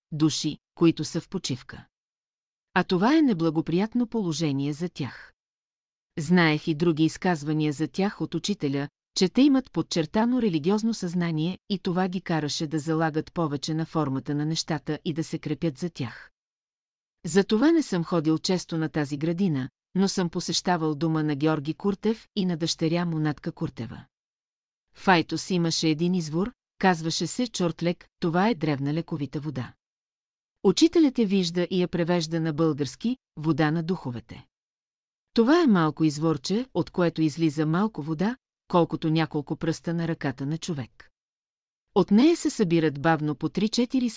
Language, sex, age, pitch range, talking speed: Bulgarian, female, 40-59, 155-190 Hz, 150 wpm